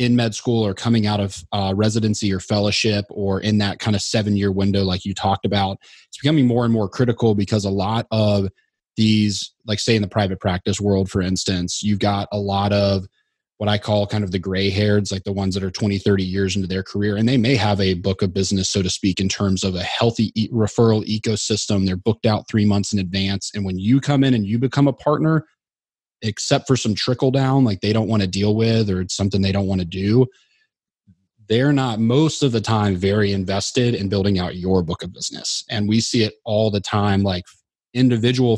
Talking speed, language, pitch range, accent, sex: 230 wpm, English, 95-110 Hz, American, male